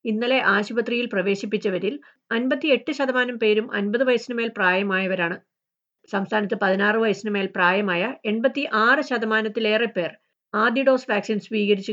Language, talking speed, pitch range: Malayalam, 120 wpm, 195-250 Hz